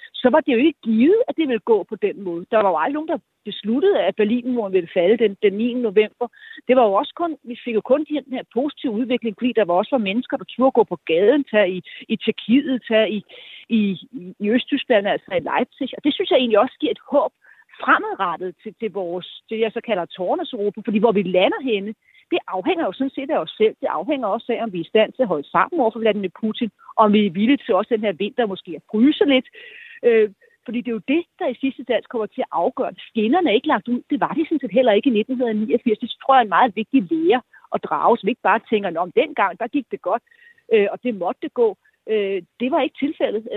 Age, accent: 40-59, native